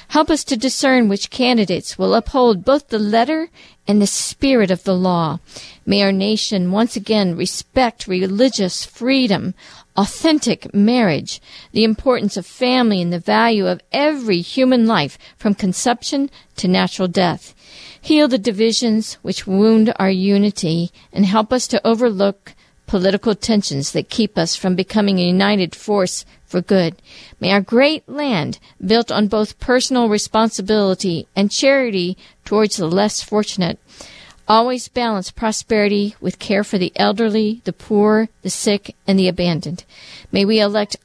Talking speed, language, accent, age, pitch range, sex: 145 wpm, English, American, 50-69, 190-235 Hz, female